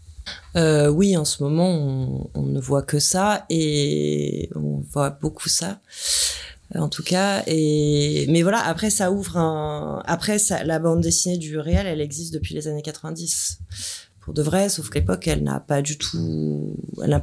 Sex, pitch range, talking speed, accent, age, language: female, 135-165 Hz, 180 wpm, French, 30-49, French